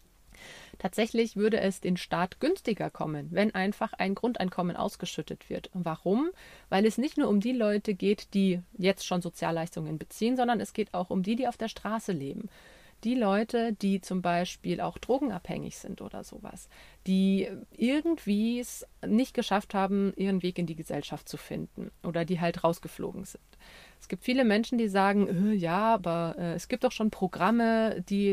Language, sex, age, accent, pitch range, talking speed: German, female, 30-49, German, 180-220 Hz, 170 wpm